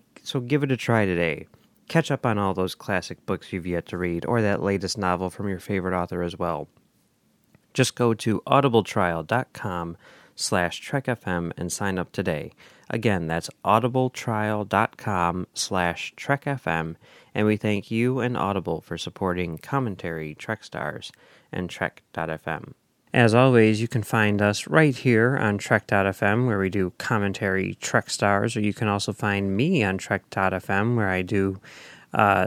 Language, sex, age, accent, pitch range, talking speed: English, male, 30-49, American, 95-125 Hz, 150 wpm